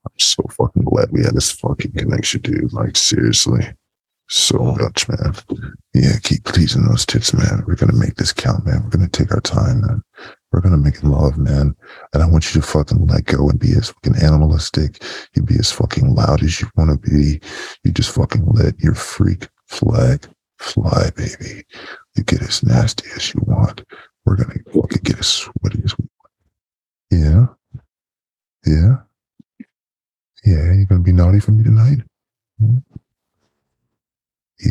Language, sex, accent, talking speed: English, male, American, 175 wpm